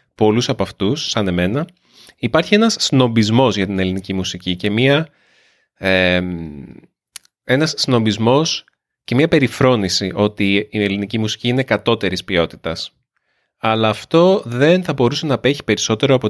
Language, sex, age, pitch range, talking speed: Greek, male, 30-49, 95-125 Hz, 130 wpm